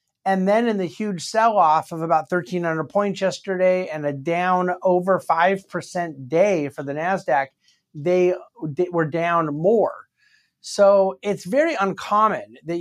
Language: English